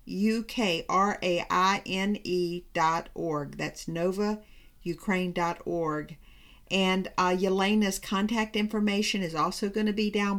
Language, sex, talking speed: English, female, 85 wpm